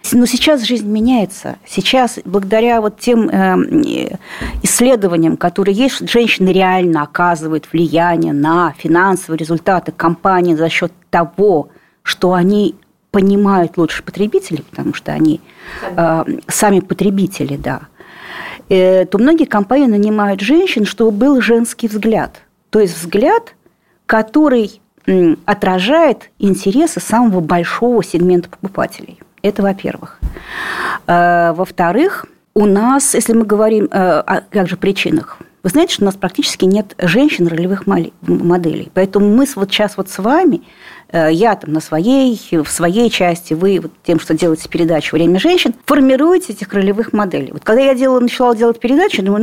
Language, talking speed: Russian, 125 wpm